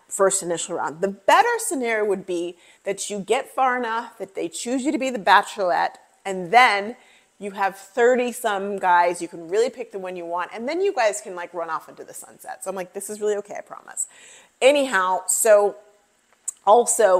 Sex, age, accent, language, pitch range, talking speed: female, 30-49, American, English, 175-230 Hz, 205 wpm